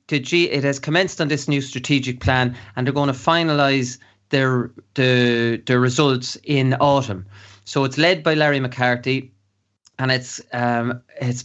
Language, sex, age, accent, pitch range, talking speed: English, male, 30-49, Irish, 125-150 Hz, 155 wpm